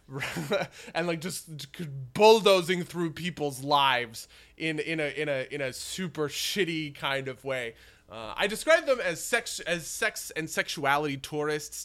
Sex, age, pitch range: male, 20-39, 130-170 Hz